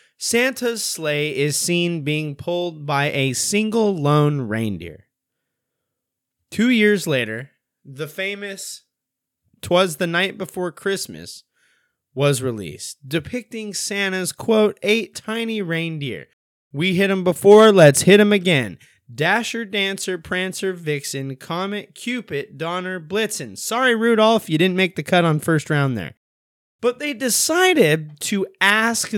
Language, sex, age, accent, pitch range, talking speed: English, male, 20-39, American, 135-200 Hz, 125 wpm